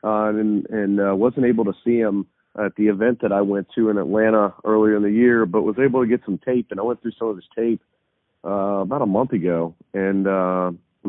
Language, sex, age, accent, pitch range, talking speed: English, male, 40-59, American, 95-110 Hz, 240 wpm